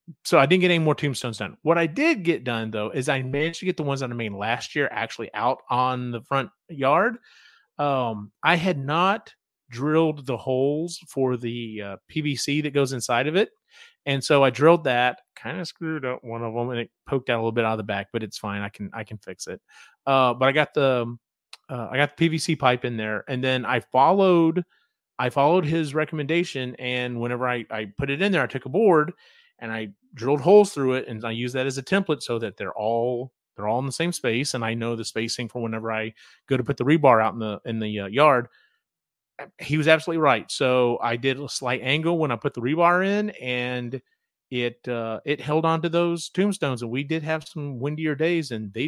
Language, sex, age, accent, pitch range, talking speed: English, male, 30-49, American, 120-160 Hz, 235 wpm